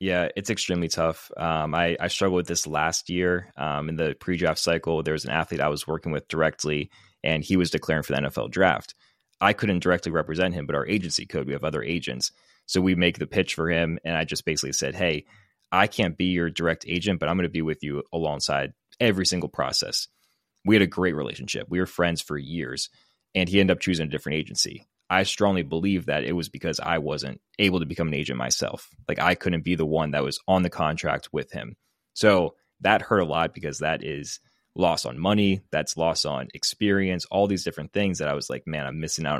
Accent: American